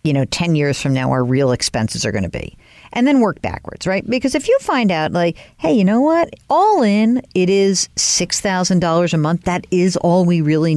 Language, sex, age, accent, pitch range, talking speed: English, female, 50-69, American, 155-215 Hz, 225 wpm